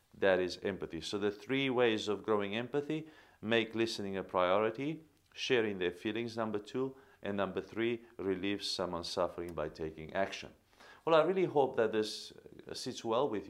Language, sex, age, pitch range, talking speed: English, male, 50-69, 95-120 Hz, 165 wpm